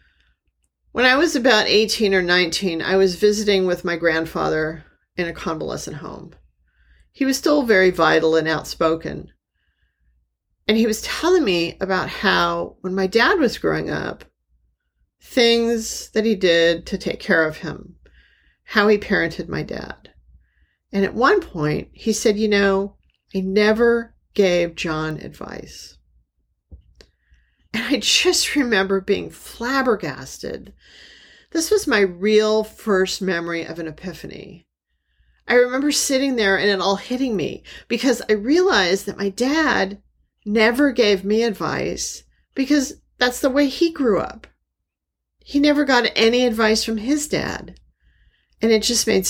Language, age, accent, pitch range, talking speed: English, 40-59, American, 160-235 Hz, 140 wpm